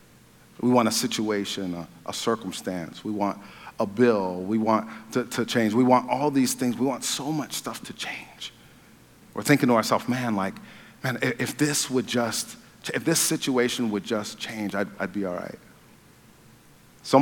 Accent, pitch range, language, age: American, 110-145 Hz, English, 40-59